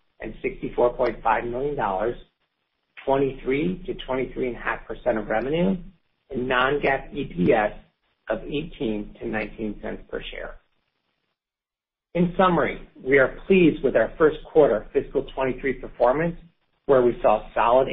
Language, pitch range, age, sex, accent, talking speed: English, 110-165 Hz, 50-69, male, American, 115 wpm